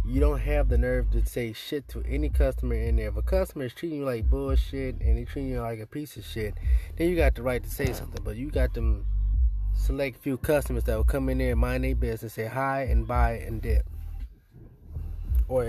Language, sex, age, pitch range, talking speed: English, male, 20-39, 95-130 Hz, 245 wpm